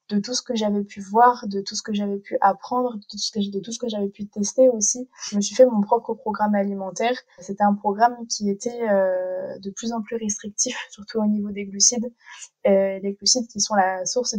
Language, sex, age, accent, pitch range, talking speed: French, female, 20-39, French, 200-235 Hz, 215 wpm